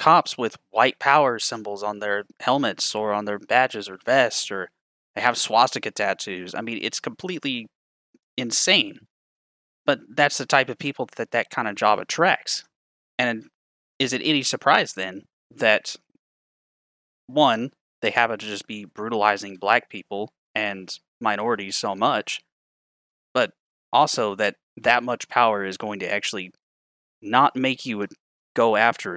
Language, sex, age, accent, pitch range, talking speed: English, male, 20-39, American, 95-120 Hz, 150 wpm